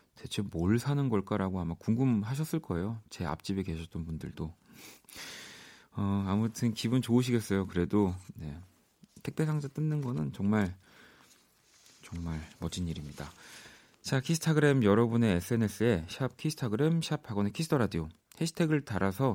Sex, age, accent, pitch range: male, 30-49, native, 90-135 Hz